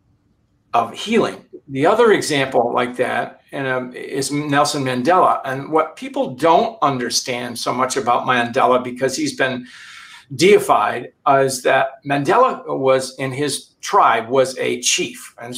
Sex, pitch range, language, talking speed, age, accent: male, 125-145 Hz, English, 145 wpm, 50-69, American